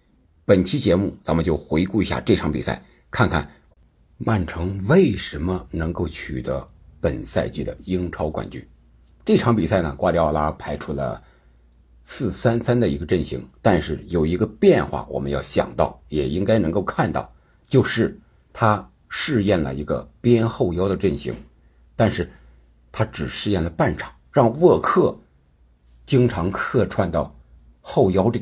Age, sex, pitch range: 60-79, male, 70-105 Hz